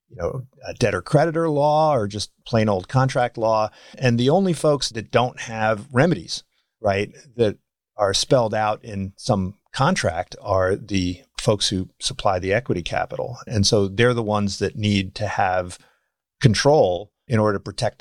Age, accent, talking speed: 40-59, American, 165 wpm